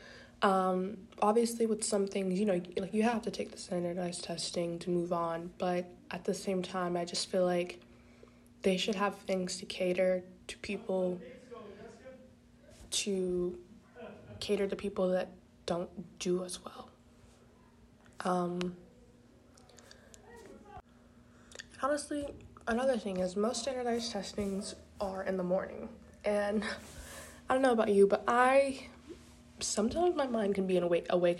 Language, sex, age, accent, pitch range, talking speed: English, female, 20-39, American, 180-215 Hz, 135 wpm